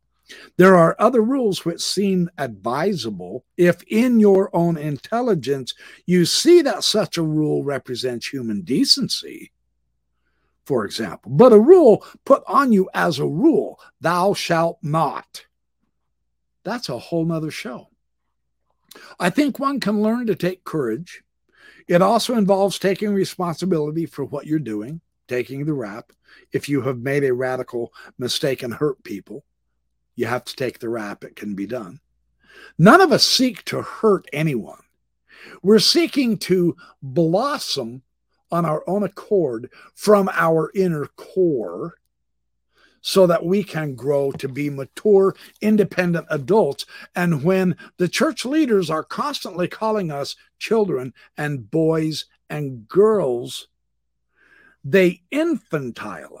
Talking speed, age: 135 wpm, 60-79